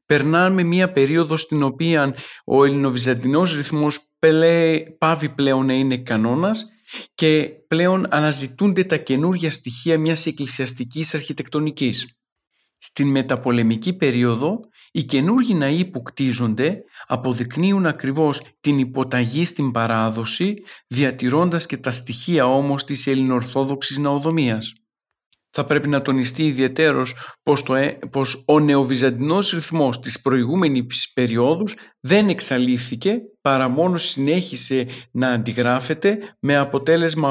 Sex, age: male, 50-69